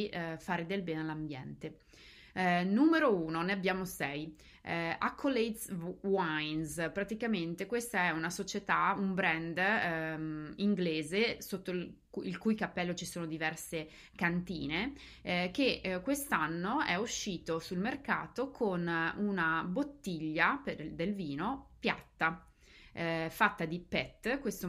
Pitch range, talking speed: 165-195 Hz, 115 wpm